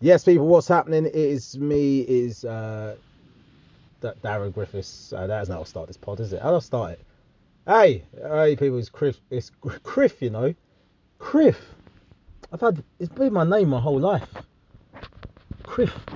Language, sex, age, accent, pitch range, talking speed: English, male, 30-49, British, 100-145 Hz, 175 wpm